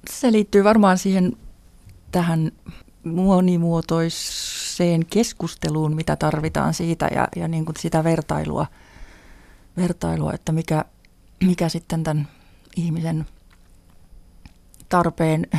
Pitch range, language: 155-175 Hz, Finnish